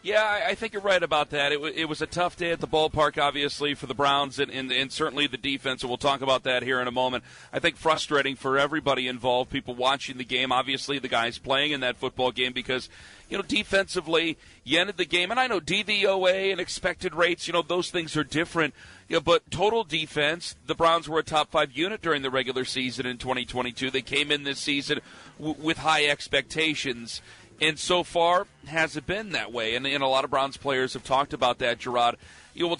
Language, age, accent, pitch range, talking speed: English, 40-59, American, 135-170 Hz, 230 wpm